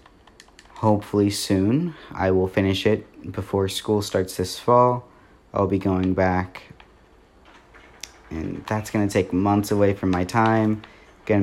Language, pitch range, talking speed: English, 95-110 Hz, 135 wpm